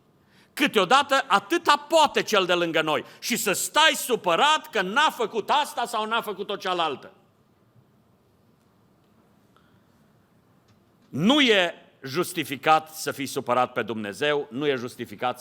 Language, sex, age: Romanian, male, 50-69